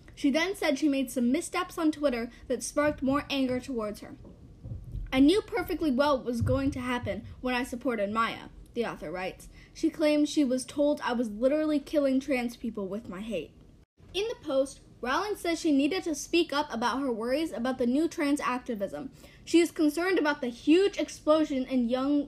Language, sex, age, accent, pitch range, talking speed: English, female, 10-29, American, 250-305 Hz, 195 wpm